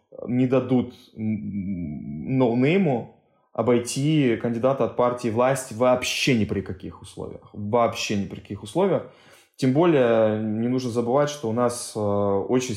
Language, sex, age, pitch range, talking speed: Russian, male, 20-39, 115-150 Hz, 125 wpm